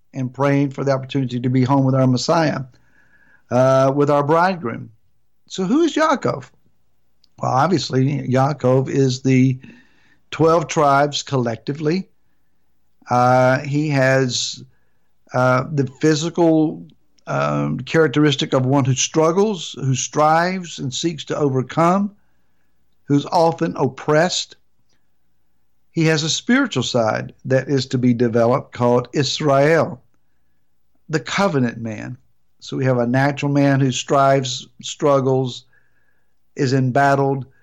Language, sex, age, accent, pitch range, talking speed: English, male, 60-79, American, 125-155 Hz, 120 wpm